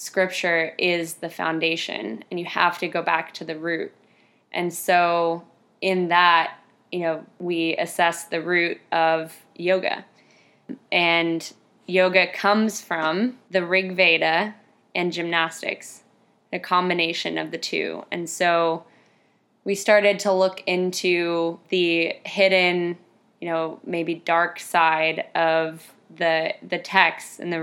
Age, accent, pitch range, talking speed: 20-39, American, 165-185 Hz, 130 wpm